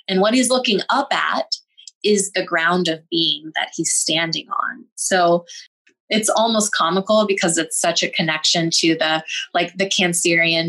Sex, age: female, 20-39